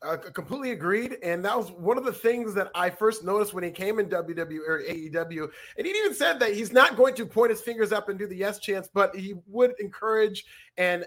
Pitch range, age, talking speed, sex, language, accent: 185-235 Hz, 30-49, 240 wpm, male, English, American